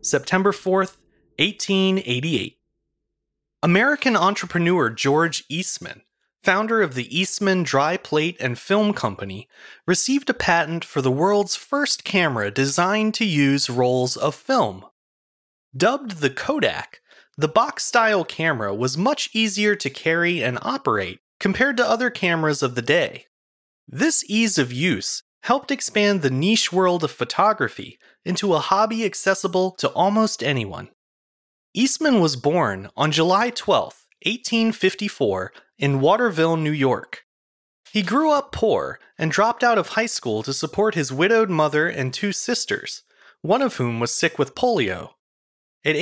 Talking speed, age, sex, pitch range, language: 135 wpm, 30-49, male, 145-220 Hz, English